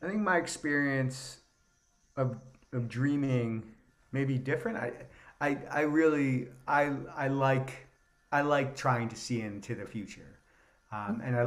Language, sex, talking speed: English, male, 145 wpm